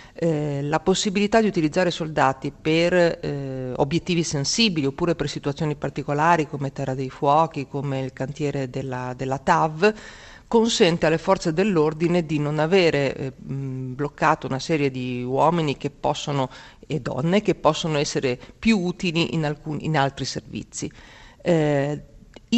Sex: female